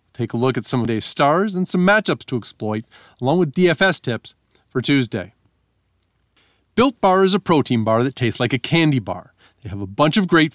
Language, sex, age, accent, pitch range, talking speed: English, male, 40-59, American, 115-165 Hz, 210 wpm